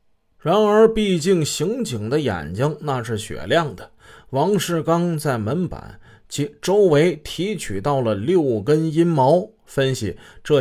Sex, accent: male, native